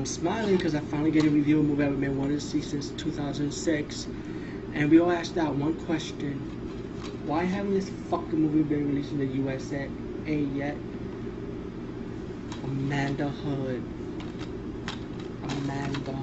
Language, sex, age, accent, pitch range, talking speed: English, male, 20-39, American, 140-170 Hz, 150 wpm